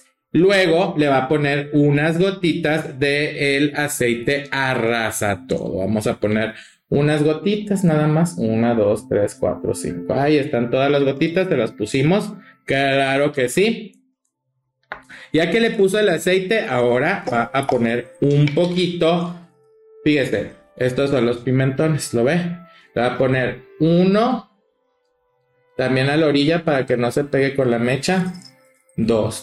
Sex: male